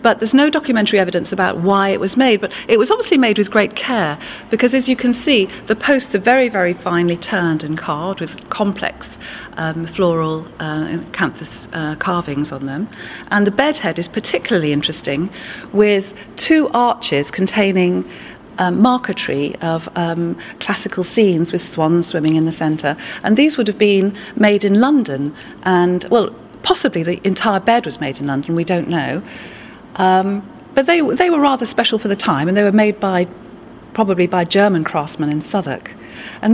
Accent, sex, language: British, female, English